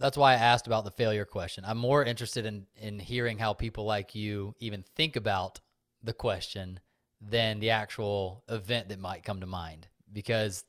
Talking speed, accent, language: 185 wpm, American, English